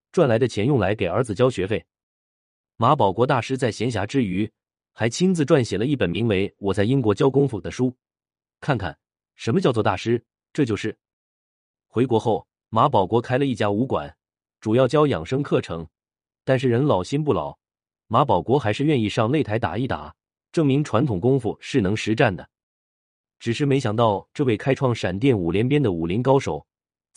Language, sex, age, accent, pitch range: Chinese, male, 30-49, native, 100-135 Hz